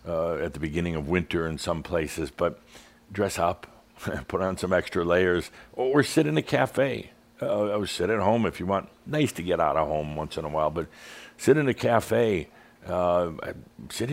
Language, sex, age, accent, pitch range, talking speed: English, male, 60-79, American, 80-95 Hz, 200 wpm